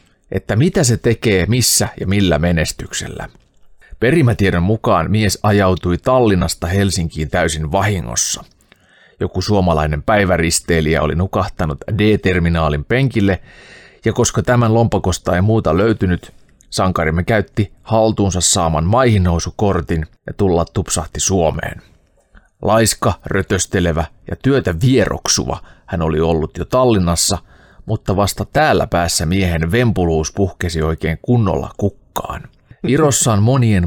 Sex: male